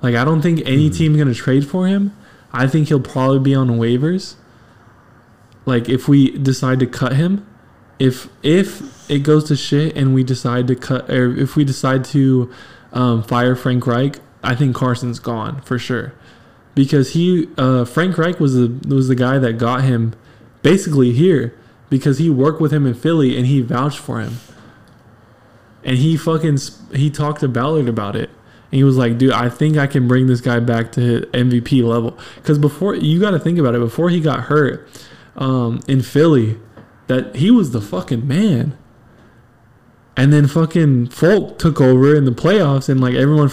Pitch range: 120-155 Hz